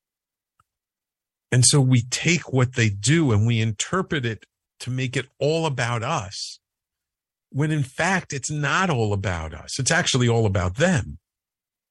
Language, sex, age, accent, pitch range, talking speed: English, male, 50-69, American, 100-135 Hz, 150 wpm